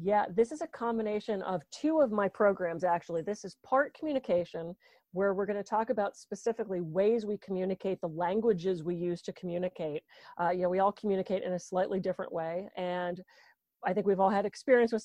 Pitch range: 180-220 Hz